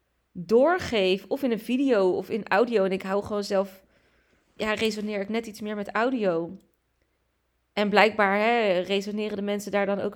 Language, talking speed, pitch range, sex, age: Dutch, 170 wpm, 190-240 Hz, female, 20-39